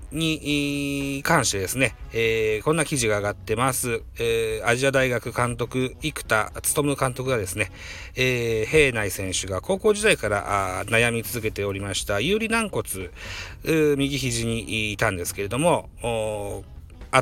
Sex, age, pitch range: male, 40-59, 105-145 Hz